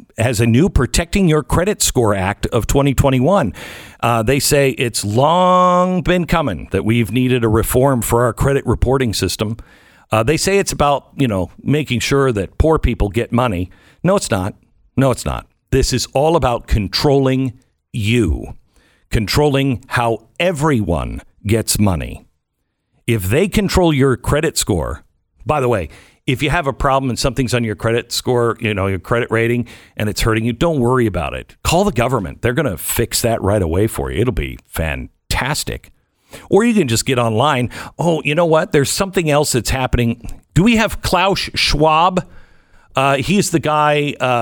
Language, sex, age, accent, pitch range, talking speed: English, male, 50-69, American, 110-145 Hz, 175 wpm